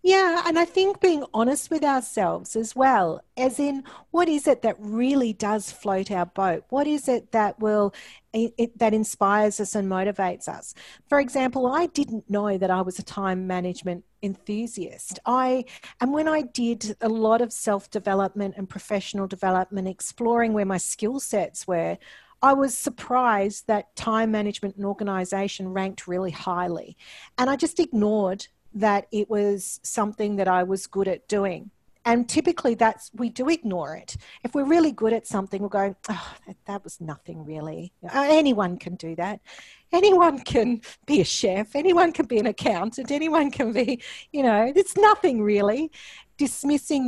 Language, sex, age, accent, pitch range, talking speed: English, female, 40-59, Australian, 195-265 Hz, 170 wpm